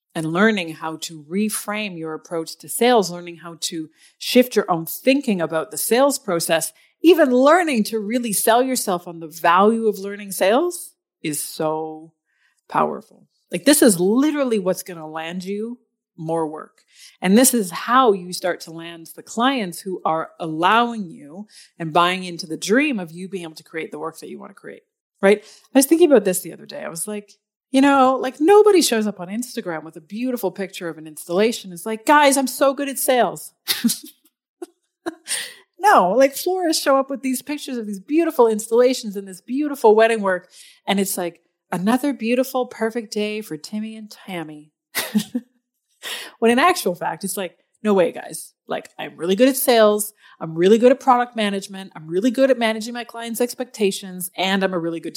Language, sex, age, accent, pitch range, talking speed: English, female, 40-59, American, 175-260 Hz, 190 wpm